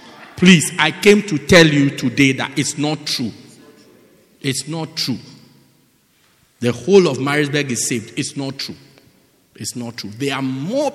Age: 50-69